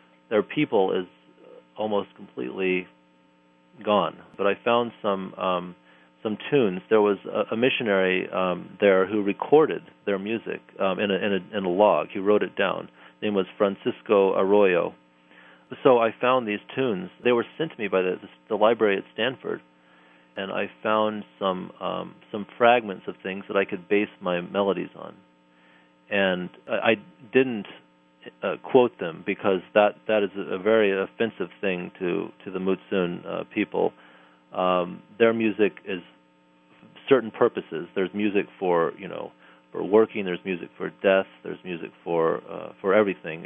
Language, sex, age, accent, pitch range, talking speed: English, male, 40-59, American, 80-105 Hz, 165 wpm